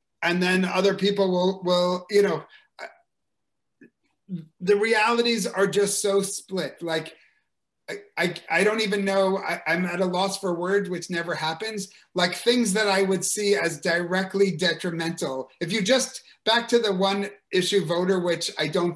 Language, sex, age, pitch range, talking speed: Slovak, male, 30-49, 165-205 Hz, 165 wpm